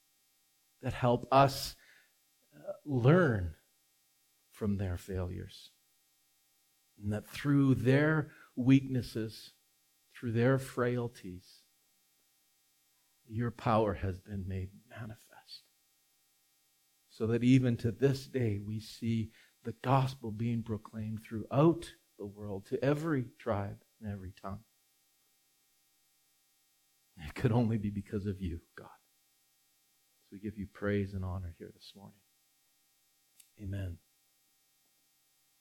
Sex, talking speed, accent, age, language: male, 100 wpm, American, 50-69, English